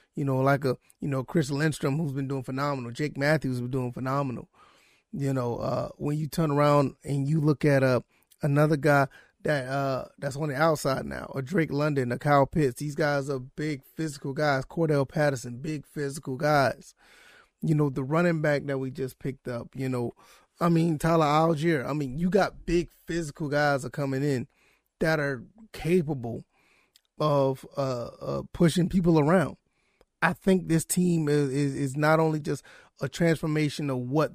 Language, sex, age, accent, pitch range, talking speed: English, male, 30-49, American, 135-165 Hz, 180 wpm